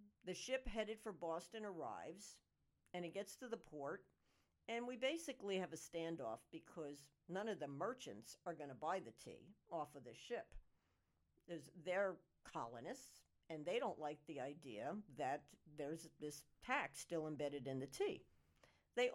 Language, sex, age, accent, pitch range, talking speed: English, female, 60-79, American, 155-205 Hz, 160 wpm